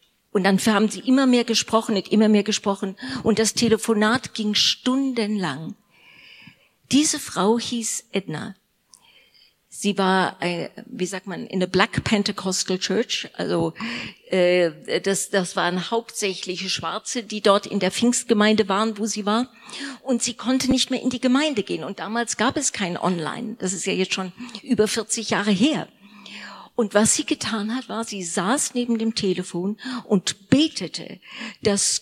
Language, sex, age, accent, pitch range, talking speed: German, female, 50-69, German, 195-245 Hz, 155 wpm